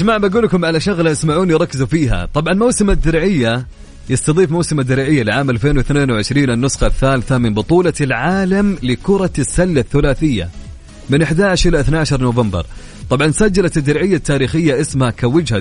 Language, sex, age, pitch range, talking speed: Arabic, male, 30-49, 110-155 Hz, 130 wpm